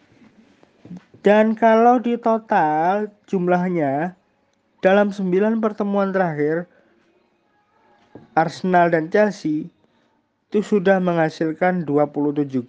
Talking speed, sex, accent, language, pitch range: 75 wpm, male, native, Indonesian, 155-200 Hz